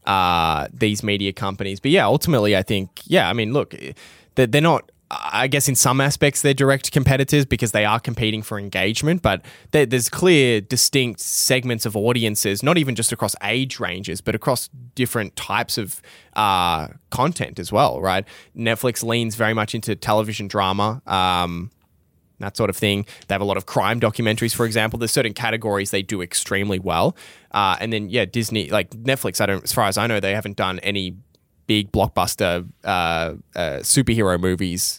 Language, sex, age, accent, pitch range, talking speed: English, male, 10-29, Australian, 95-120 Hz, 180 wpm